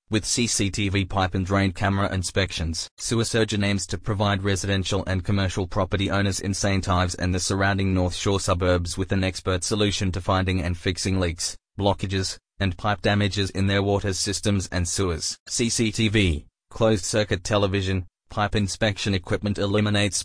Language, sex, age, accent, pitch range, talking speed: English, male, 20-39, Australian, 95-100 Hz, 155 wpm